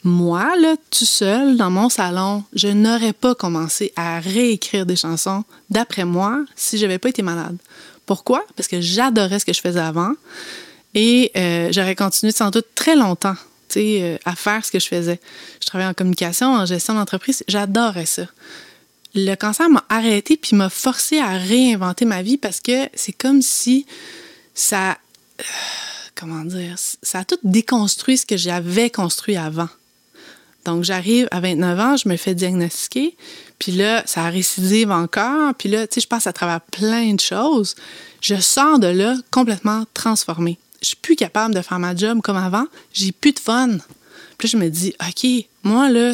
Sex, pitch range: female, 185-250 Hz